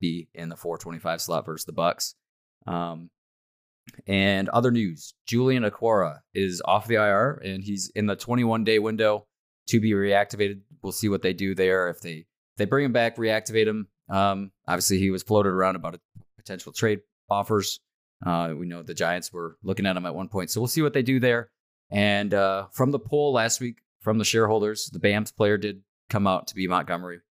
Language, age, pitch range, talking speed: English, 20-39, 90-115 Hz, 200 wpm